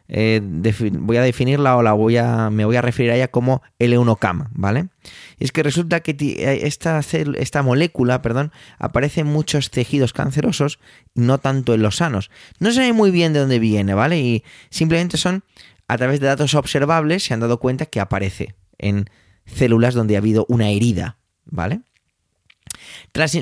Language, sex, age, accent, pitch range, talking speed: Spanish, male, 20-39, Spanish, 110-145 Hz, 180 wpm